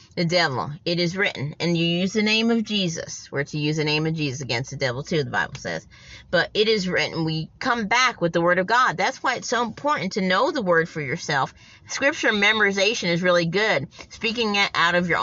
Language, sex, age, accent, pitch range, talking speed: English, female, 30-49, American, 160-220 Hz, 235 wpm